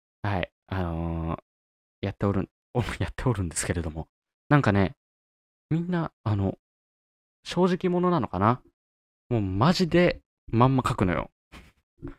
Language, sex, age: Japanese, male, 20-39